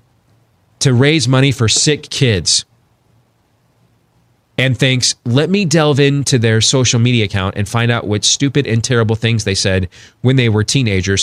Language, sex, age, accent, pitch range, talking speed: English, male, 30-49, American, 115-145 Hz, 160 wpm